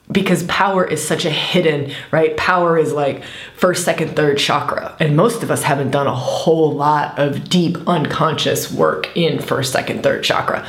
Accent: American